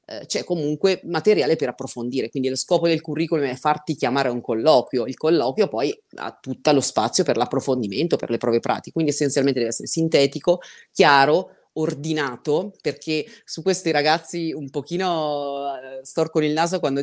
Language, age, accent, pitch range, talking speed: Italian, 30-49, native, 130-160 Hz, 160 wpm